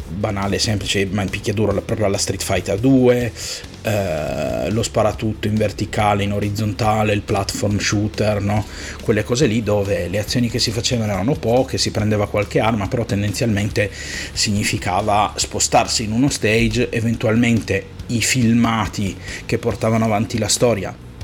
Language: Italian